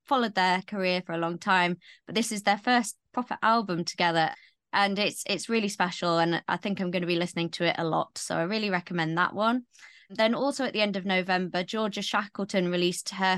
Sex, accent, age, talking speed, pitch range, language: female, British, 20-39, 220 wpm, 180-220 Hz, English